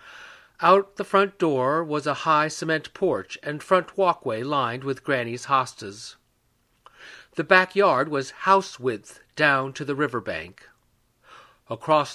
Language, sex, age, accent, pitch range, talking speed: English, male, 50-69, American, 130-180 Hz, 140 wpm